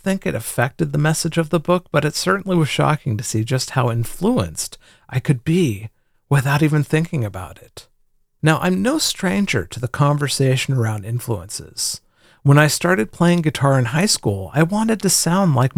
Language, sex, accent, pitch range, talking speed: English, male, American, 120-165 Hz, 185 wpm